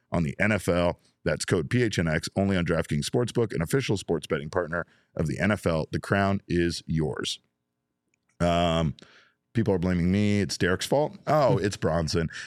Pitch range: 80-95 Hz